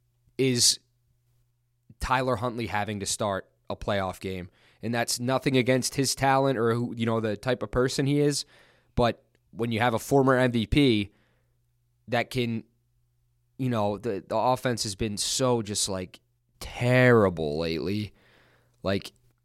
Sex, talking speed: male, 145 wpm